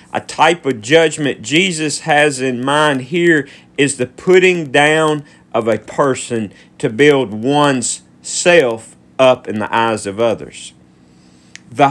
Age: 40-59